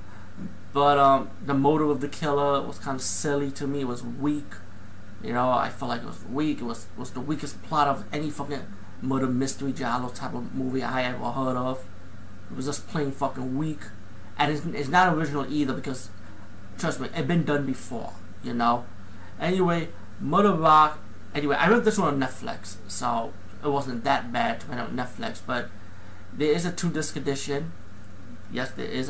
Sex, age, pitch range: male, 30-49, 105-145 Hz